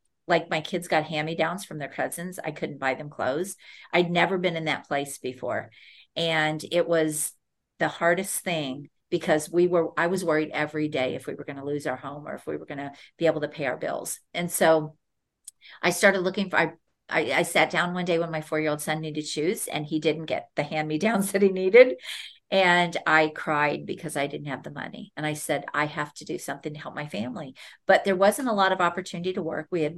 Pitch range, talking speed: 155-185 Hz, 230 wpm